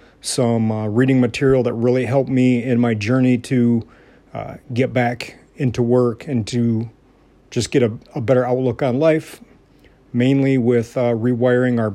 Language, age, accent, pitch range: English, 40-59, American, 115-135 Hz